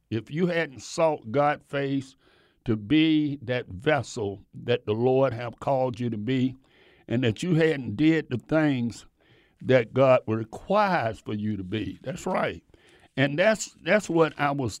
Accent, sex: American, male